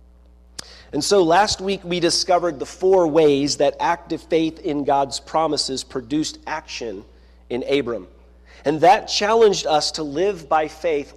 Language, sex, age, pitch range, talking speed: English, male, 40-59, 130-175 Hz, 145 wpm